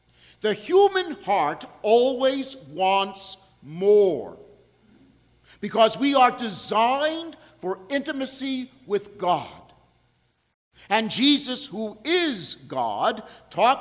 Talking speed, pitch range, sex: 85 wpm, 170-255 Hz, male